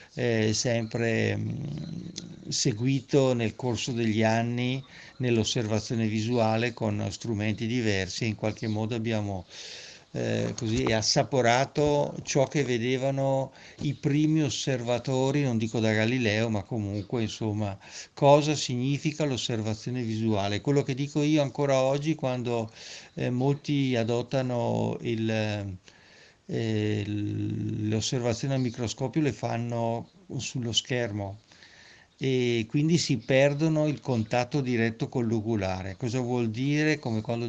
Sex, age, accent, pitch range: male, 60-79, native, 110-140 Hz